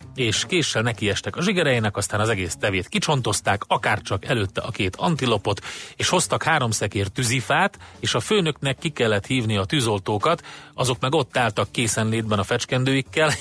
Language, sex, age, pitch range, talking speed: Hungarian, male, 30-49, 110-145 Hz, 165 wpm